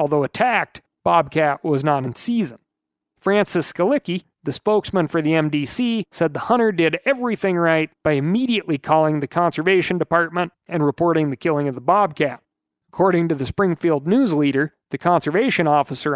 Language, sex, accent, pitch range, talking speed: English, male, American, 145-180 Hz, 155 wpm